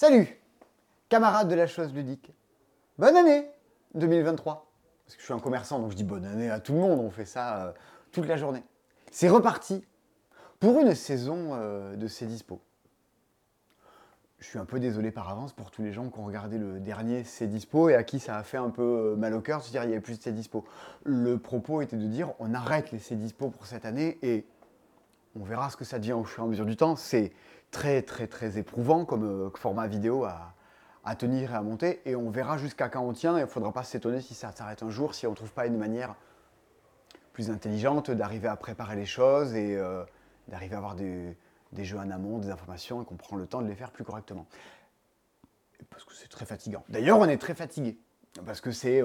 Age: 30-49